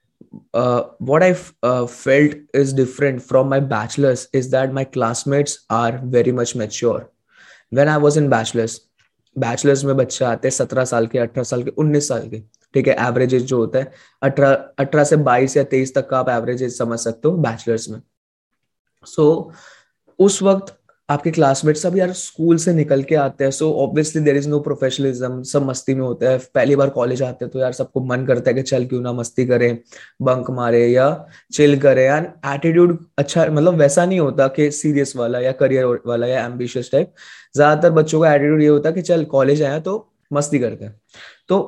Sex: male